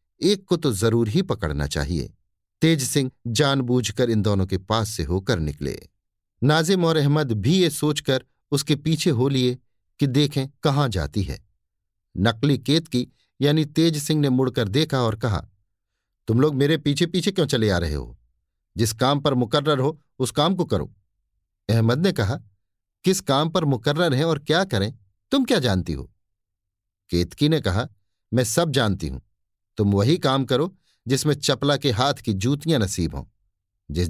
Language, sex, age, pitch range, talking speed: Hindi, male, 50-69, 100-145 Hz, 170 wpm